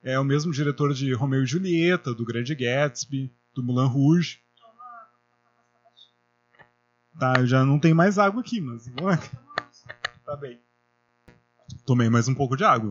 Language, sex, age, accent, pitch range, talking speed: Portuguese, male, 30-49, Brazilian, 125-205 Hz, 145 wpm